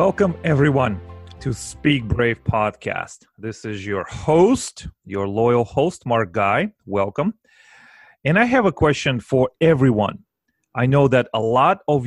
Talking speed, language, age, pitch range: 145 wpm, English, 30-49, 115-145 Hz